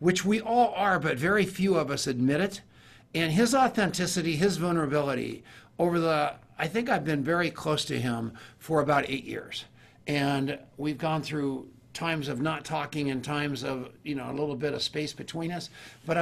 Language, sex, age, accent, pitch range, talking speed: English, male, 50-69, American, 135-170 Hz, 190 wpm